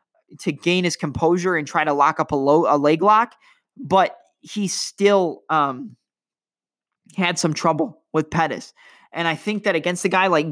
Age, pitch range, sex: 20-39, 160-200 Hz, male